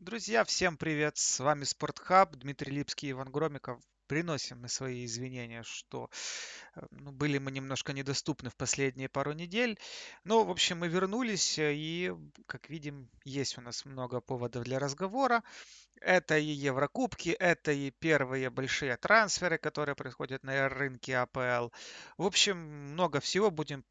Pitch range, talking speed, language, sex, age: 130-175 Hz, 145 wpm, Russian, male, 30-49